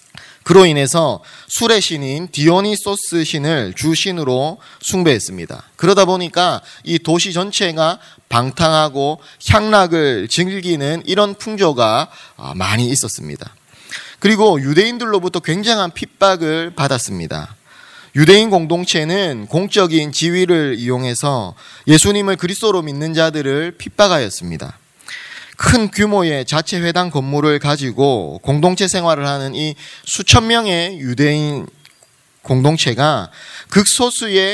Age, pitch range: 30-49, 145-195 Hz